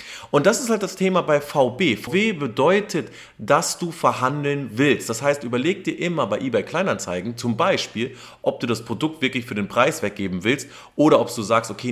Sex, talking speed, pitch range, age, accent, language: male, 195 wpm, 120-175 Hz, 30-49, German, German